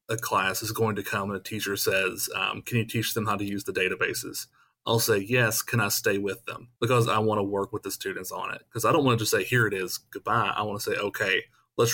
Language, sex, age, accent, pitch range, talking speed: English, male, 30-49, American, 105-120 Hz, 275 wpm